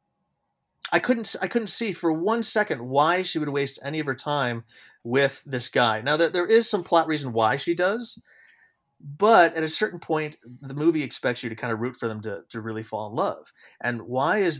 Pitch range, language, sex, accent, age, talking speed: 115-170 Hz, English, male, American, 30-49, 220 wpm